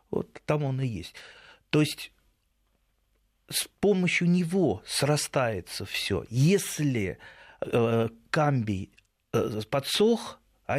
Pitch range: 100-135 Hz